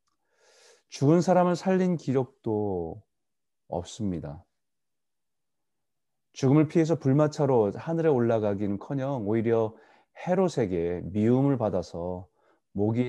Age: 30-49